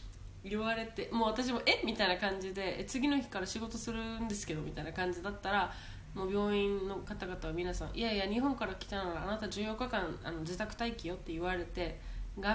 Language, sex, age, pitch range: Japanese, female, 20-39, 170-215 Hz